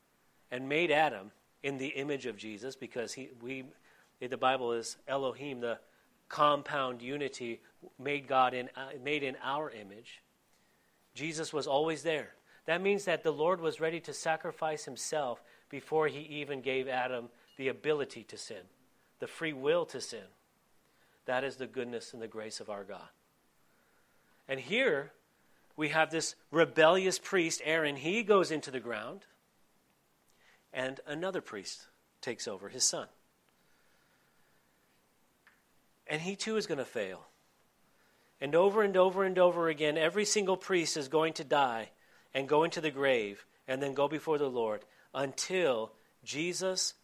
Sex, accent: male, American